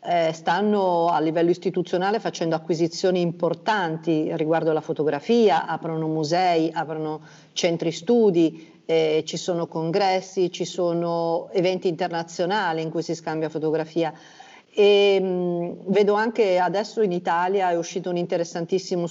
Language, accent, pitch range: Italian, native, 165-190 Hz